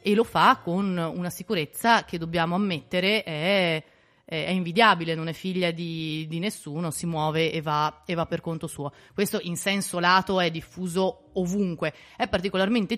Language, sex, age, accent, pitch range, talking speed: Italian, female, 30-49, native, 175-220 Hz, 170 wpm